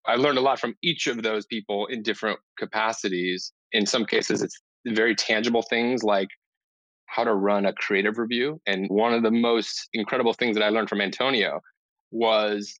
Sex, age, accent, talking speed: male, 30-49, American, 185 wpm